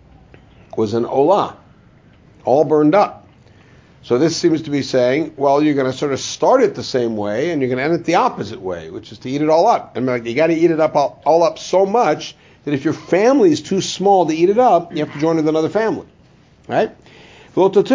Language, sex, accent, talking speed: English, male, American, 230 wpm